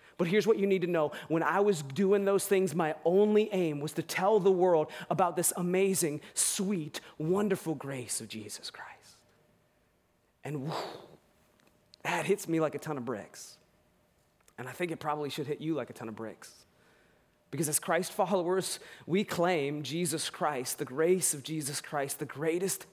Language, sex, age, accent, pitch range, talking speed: English, male, 30-49, American, 150-190 Hz, 175 wpm